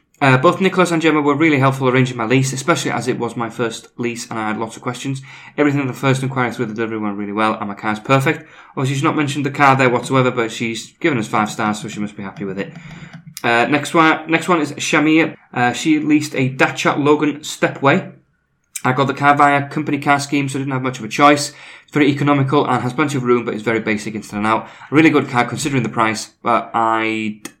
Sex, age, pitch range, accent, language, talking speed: male, 20-39, 115-150 Hz, British, English, 250 wpm